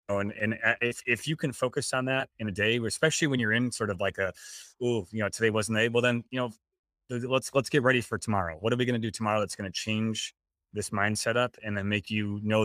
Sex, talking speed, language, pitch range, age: male, 255 wpm, English, 100-120 Hz, 20-39